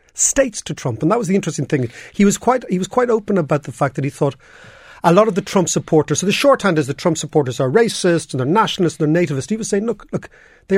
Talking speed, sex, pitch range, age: 275 wpm, male, 145-195 Hz, 40-59